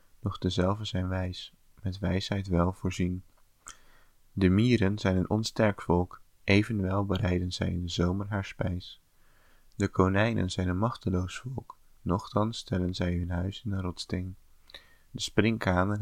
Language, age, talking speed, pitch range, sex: English, 20-39, 145 wpm, 90-105 Hz, male